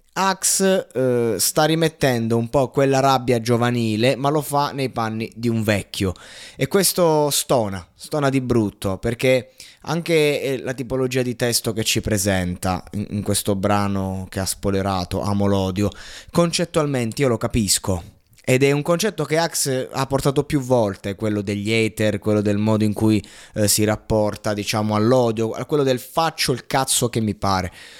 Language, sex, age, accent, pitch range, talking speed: Italian, male, 20-39, native, 100-130 Hz, 160 wpm